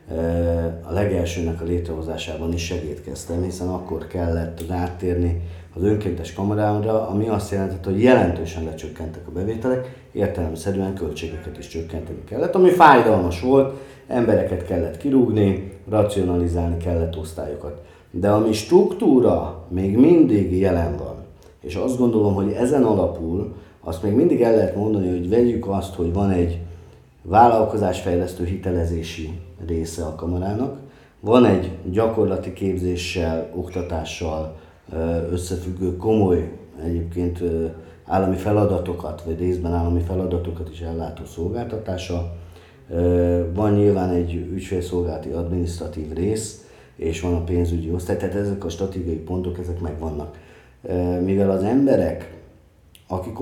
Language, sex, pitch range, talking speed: Hungarian, male, 85-100 Hz, 120 wpm